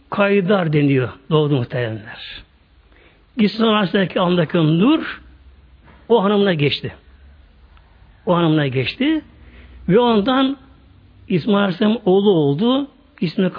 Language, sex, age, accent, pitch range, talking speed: Turkish, male, 60-79, native, 155-255 Hz, 95 wpm